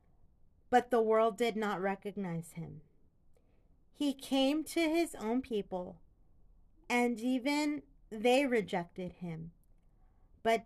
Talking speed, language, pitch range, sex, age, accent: 105 wpm, English, 150-230 Hz, female, 30-49, American